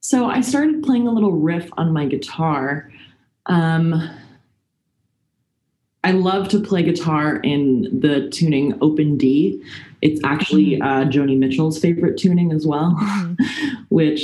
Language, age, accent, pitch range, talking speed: English, 20-39, American, 135-175 Hz, 130 wpm